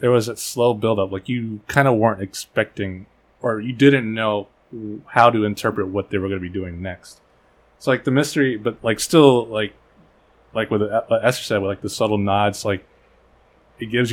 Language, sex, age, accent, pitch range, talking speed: English, male, 20-39, American, 100-120 Hz, 205 wpm